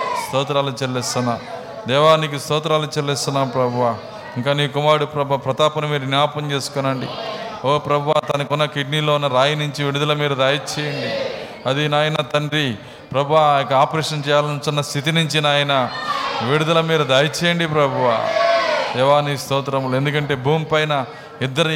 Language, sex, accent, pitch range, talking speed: Telugu, male, native, 140-155 Hz, 120 wpm